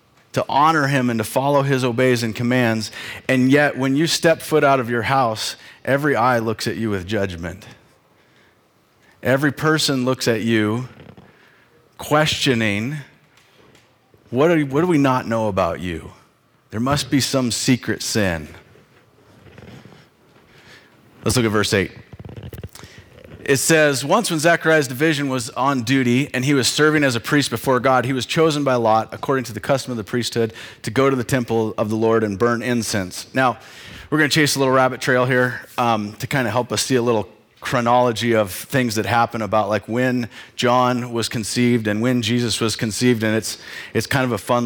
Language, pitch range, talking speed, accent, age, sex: English, 110-135 Hz, 180 wpm, American, 40-59, male